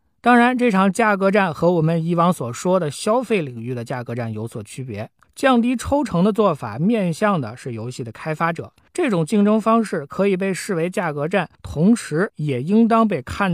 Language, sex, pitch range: Chinese, male, 135-200 Hz